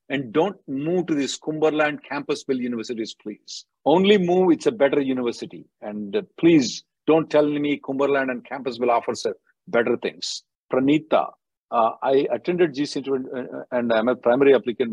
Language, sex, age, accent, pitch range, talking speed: English, male, 50-69, Indian, 125-160 Hz, 145 wpm